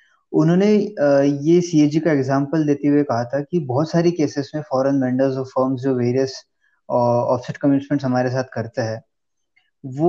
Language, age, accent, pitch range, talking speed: Hindi, 20-39, native, 125-150 Hz, 145 wpm